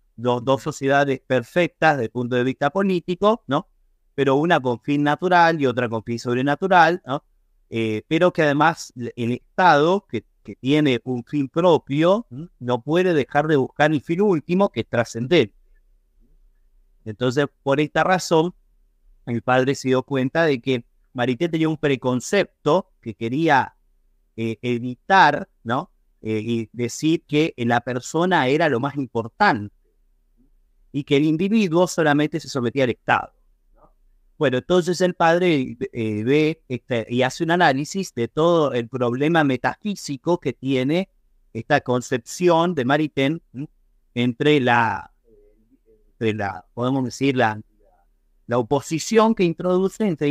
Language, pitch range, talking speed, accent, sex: Spanish, 115-160 Hz, 135 wpm, Argentinian, male